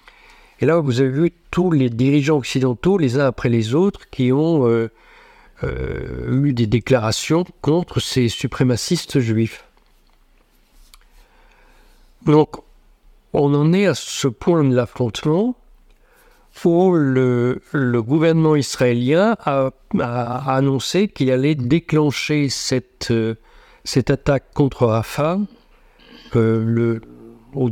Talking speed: 110 wpm